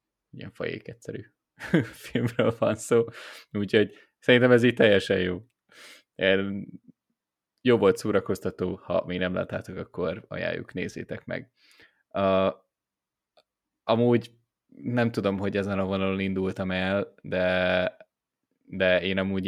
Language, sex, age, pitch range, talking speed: Hungarian, male, 20-39, 90-115 Hz, 115 wpm